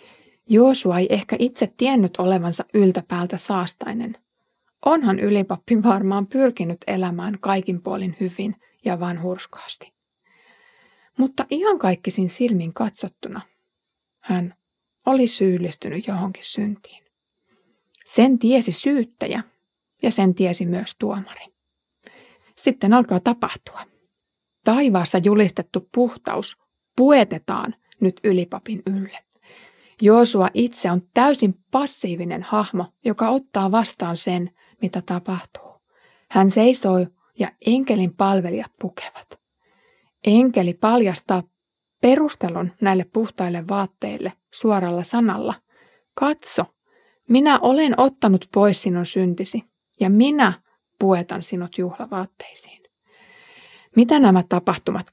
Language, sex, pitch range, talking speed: Finnish, female, 185-245 Hz, 95 wpm